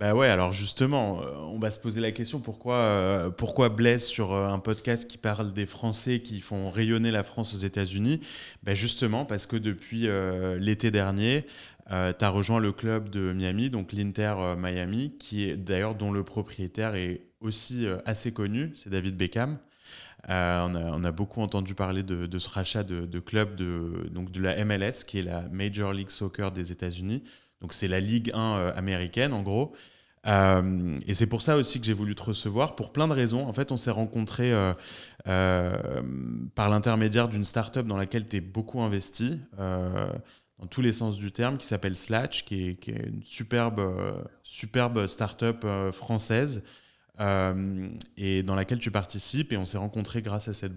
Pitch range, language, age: 95-115 Hz, French, 20-39